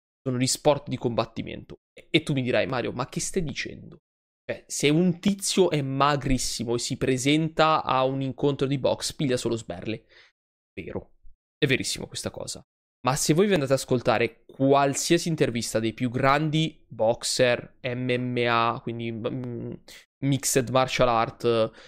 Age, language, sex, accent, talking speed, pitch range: 20-39, Italian, male, native, 150 wpm, 120-145 Hz